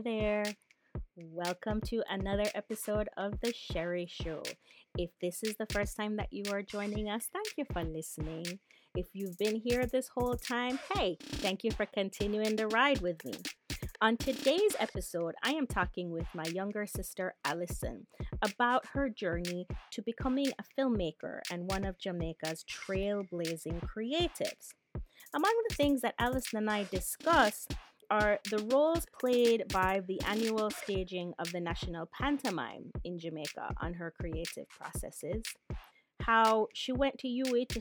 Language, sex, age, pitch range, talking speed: English, female, 30-49, 180-250 Hz, 155 wpm